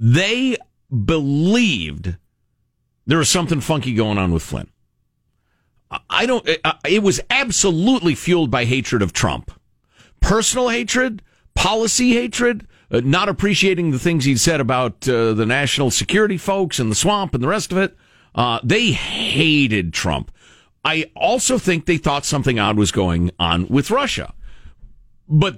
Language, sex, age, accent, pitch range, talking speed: English, male, 50-69, American, 110-180 Hz, 145 wpm